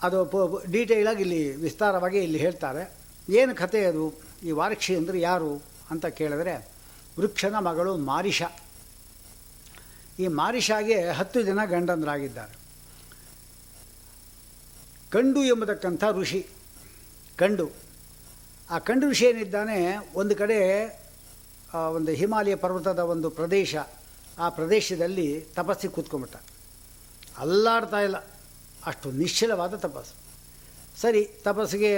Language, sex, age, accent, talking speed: Kannada, male, 60-79, native, 90 wpm